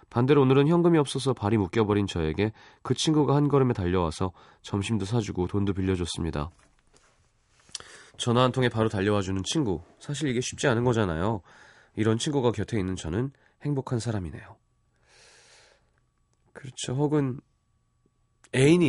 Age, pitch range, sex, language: 30-49, 95-135 Hz, male, Korean